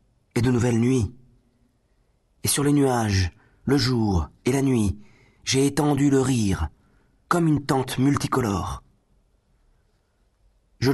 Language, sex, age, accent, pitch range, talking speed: French, male, 40-59, French, 100-130 Hz, 120 wpm